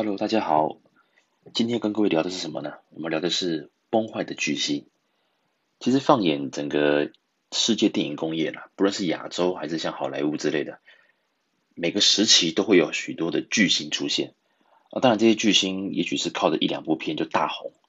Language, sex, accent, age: Chinese, male, native, 30-49